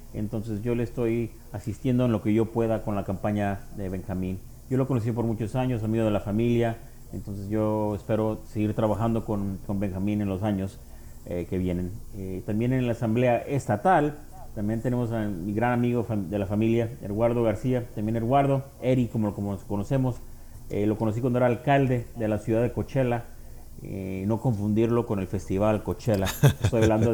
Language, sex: Spanish, male